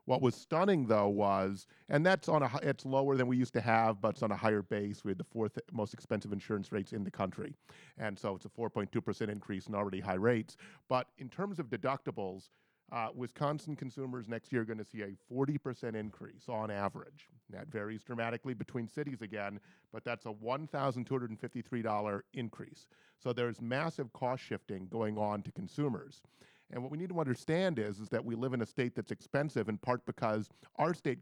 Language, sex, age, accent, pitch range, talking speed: English, male, 40-59, American, 110-135 Hz, 200 wpm